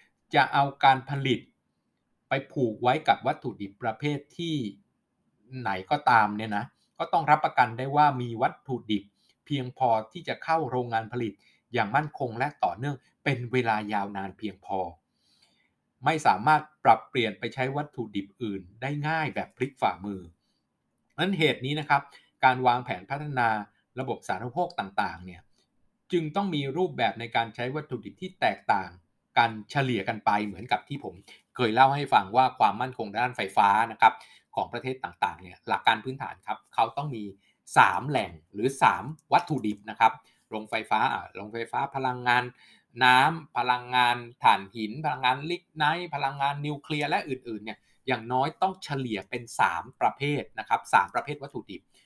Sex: male